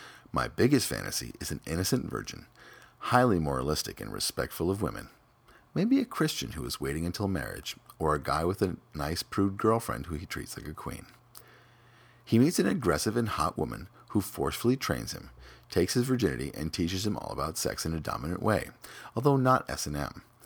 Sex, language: male, English